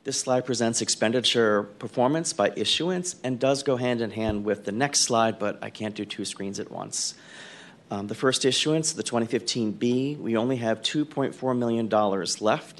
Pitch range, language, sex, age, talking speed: 110-135 Hz, English, male, 40-59, 180 wpm